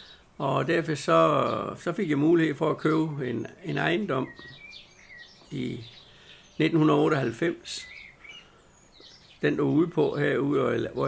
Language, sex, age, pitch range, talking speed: Danish, male, 60-79, 130-155 Hz, 115 wpm